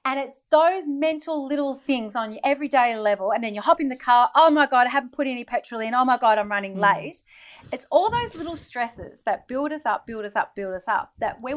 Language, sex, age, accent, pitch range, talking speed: English, female, 30-49, Australian, 185-245 Hz, 250 wpm